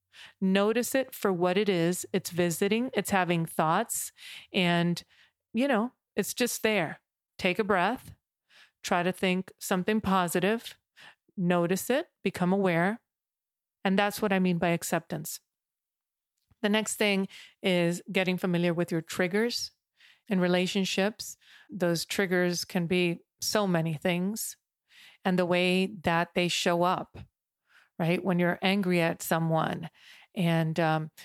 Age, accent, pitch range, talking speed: 40-59, American, 170-200 Hz, 135 wpm